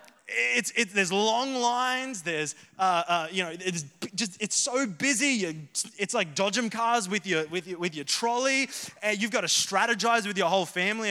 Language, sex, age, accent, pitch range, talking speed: English, male, 20-39, Australian, 185-245 Hz, 190 wpm